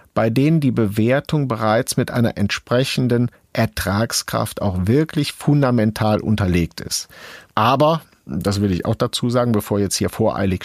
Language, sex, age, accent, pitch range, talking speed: German, male, 50-69, German, 105-135 Hz, 140 wpm